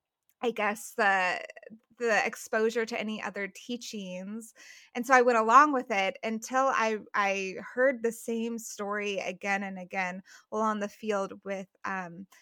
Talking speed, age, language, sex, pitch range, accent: 155 wpm, 20-39, English, female, 195-230 Hz, American